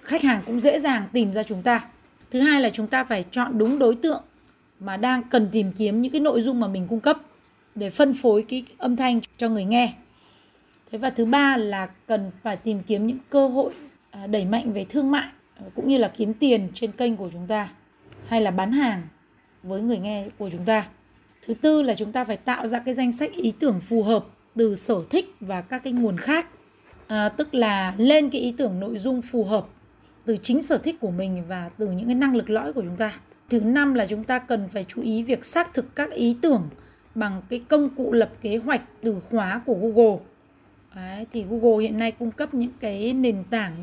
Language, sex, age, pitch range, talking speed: Vietnamese, female, 20-39, 215-255 Hz, 225 wpm